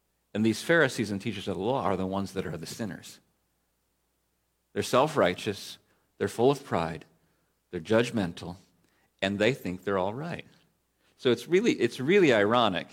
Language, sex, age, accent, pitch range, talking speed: English, male, 50-69, American, 110-165 Hz, 160 wpm